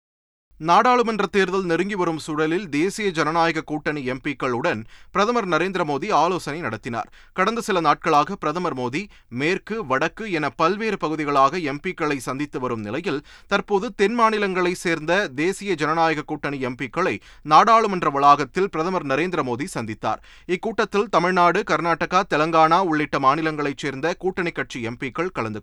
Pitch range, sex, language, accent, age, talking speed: 130-180 Hz, male, Tamil, native, 30-49, 115 wpm